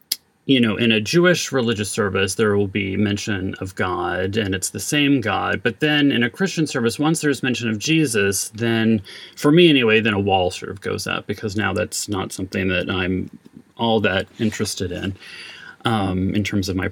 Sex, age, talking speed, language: male, 30-49, 200 wpm, English